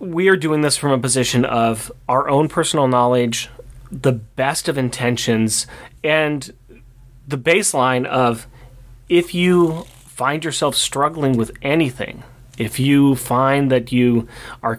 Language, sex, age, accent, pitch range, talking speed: English, male, 30-49, American, 120-140 Hz, 135 wpm